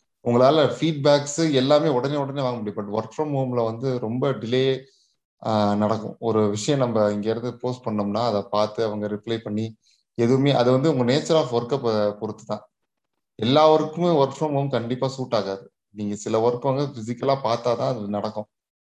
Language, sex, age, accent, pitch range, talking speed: Tamil, male, 20-39, native, 110-135 Hz, 165 wpm